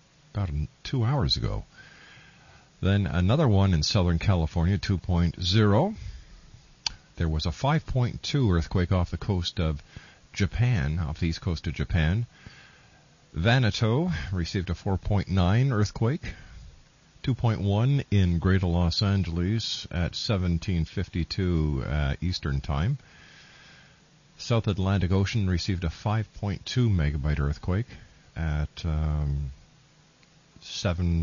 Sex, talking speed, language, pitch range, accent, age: male, 100 wpm, English, 85-105 Hz, American, 50-69